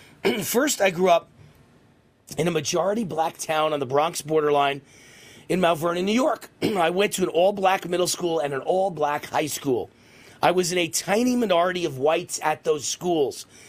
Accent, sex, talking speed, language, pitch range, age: American, male, 175 wpm, English, 165-210 Hz, 40-59